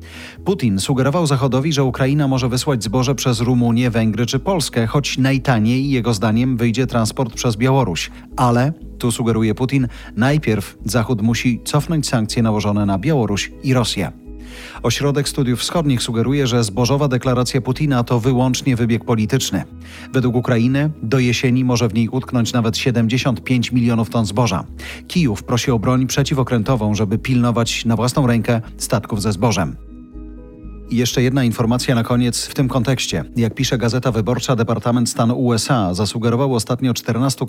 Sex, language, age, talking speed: male, Polish, 40-59, 145 wpm